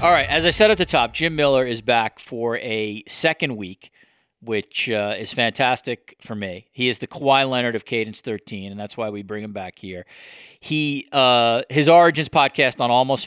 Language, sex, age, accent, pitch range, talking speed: English, male, 40-59, American, 105-130 Hz, 205 wpm